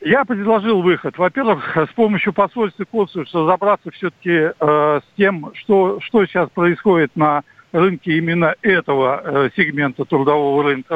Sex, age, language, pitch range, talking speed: male, 60-79, Russian, 155-195 Hz, 130 wpm